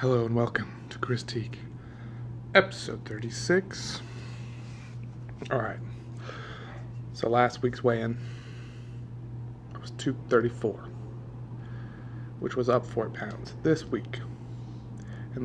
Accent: American